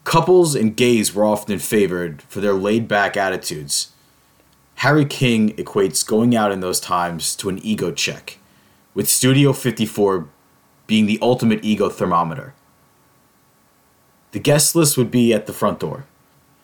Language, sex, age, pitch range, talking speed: English, male, 30-49, 100-125 Hz, 140 wpm